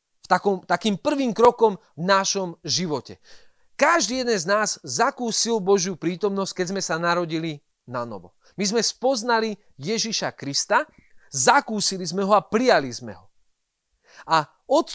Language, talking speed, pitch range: Slovak, 135 wpm, 175-245 Hz